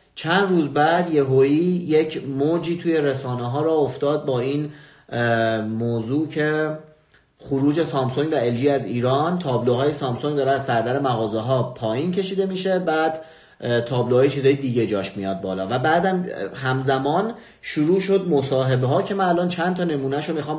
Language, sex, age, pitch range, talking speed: Persian, male, 30-49, 120-160 Hz, 155 wpm